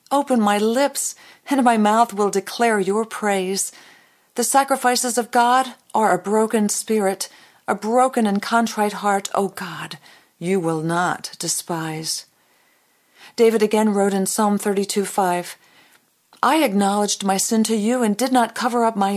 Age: 40-59